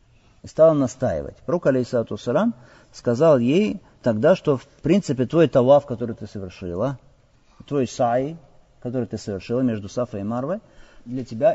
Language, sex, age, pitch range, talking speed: Russian, male, 50-69, 110-160 Hz, 140 wpm